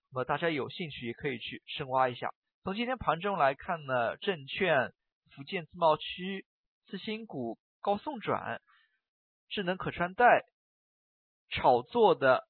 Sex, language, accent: male, Chinese, native